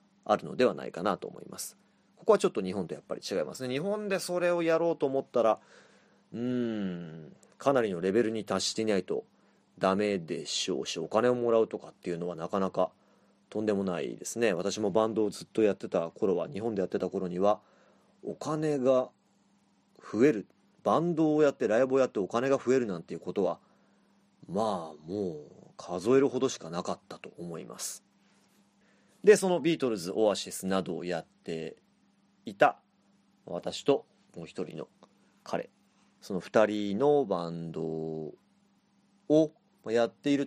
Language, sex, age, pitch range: Japanese, male, 30-49, 95-155 Hz